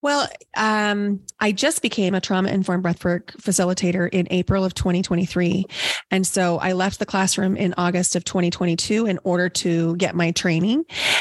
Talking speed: 155 wpm